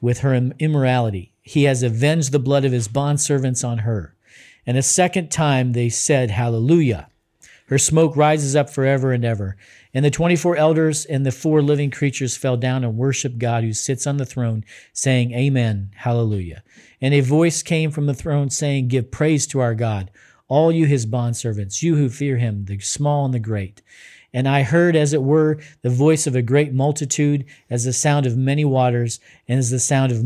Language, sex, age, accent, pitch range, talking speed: English, male, 50-69, American, 120-145 Hz, 195 wpm